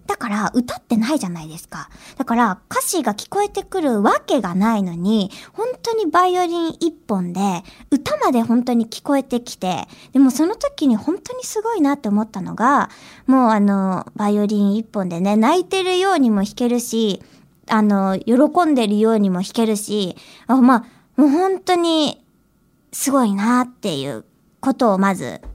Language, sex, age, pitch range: Japanese, male, 20-39, 210-310 Hz